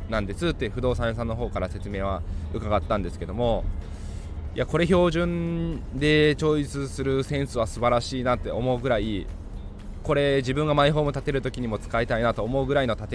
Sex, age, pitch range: male, 20-39, 95-135 Hz